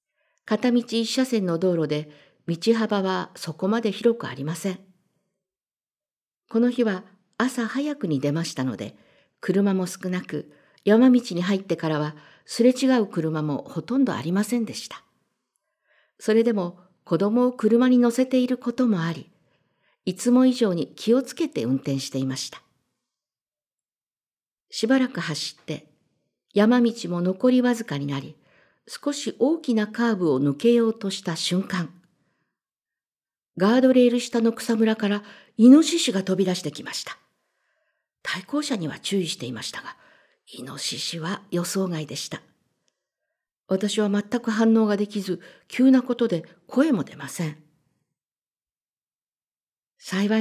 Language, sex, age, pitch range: Japanese, female, 50-69, 165-235 Hz